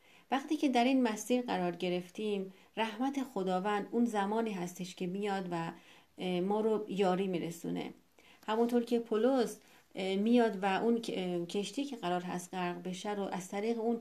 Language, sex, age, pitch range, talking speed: Persian, female, 40-59, 180-235 Hz, 150 wpm